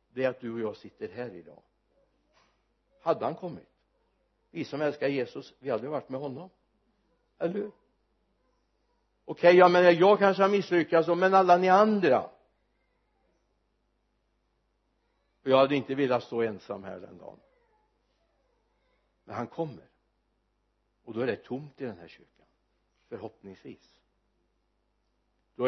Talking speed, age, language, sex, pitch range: 140 wpm, 60-79, Swedish, male, 120-175 Hz